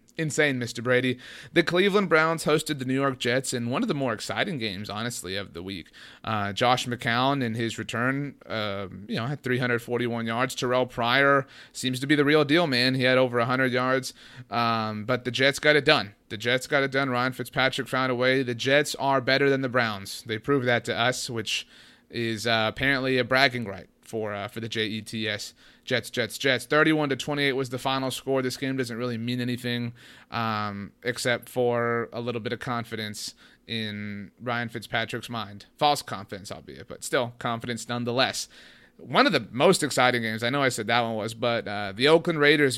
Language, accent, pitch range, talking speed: English, American, 115-135 Hz, 200 wpm